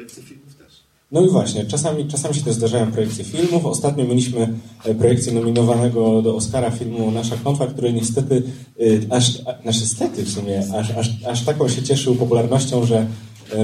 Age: 30-49